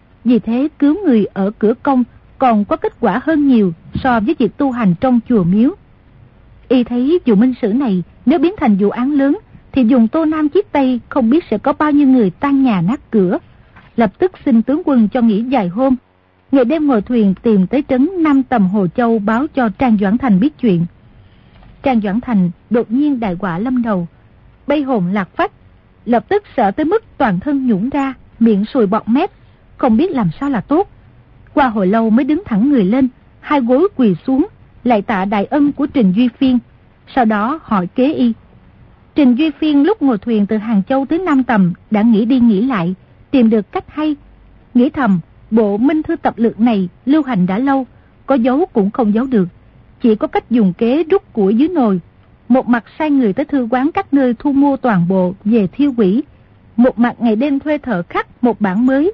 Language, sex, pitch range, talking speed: Vietnamese, female, 215-280 Hz, 210 wpm